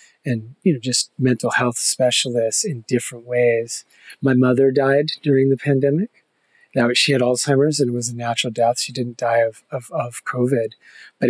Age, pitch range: 30-49, 120-135 Hz